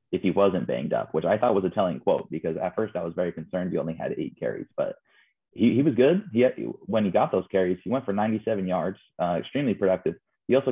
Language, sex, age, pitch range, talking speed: English, male, 30-49, 90-115 Hz, 260 wpm